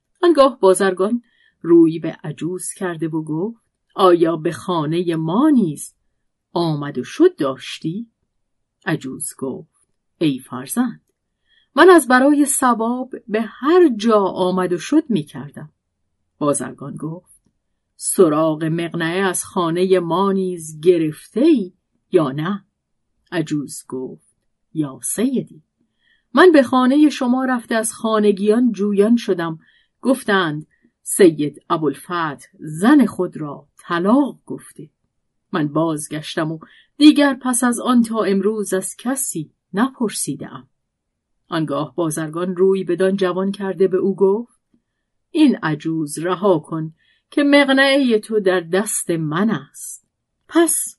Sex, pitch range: female, 160-225 Hz